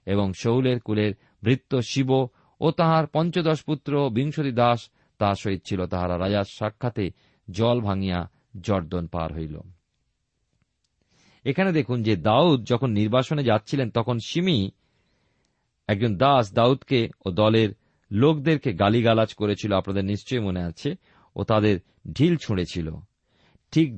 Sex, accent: male, native